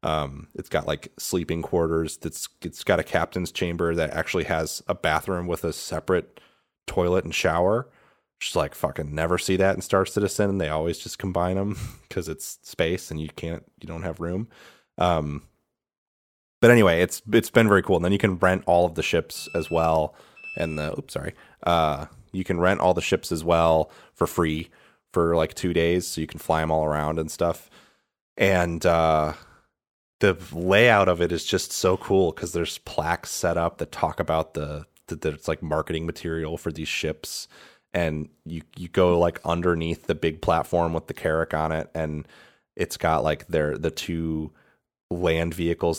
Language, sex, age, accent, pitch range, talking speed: English, male, 30-49, American, 80-90 Hz, 190 wpm